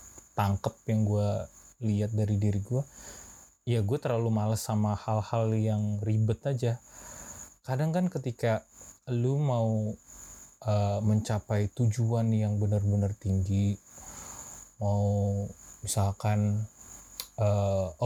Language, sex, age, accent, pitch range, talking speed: Indonesian, male, 20-39, native, 100-115 Hz, 100 wpm